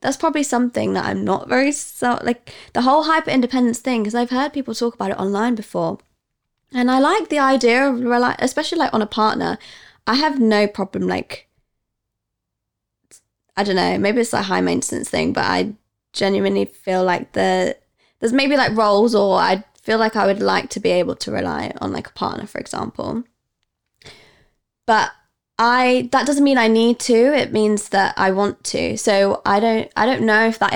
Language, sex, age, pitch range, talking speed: English, female, 20-39, 180-240 Hz, 185 wpm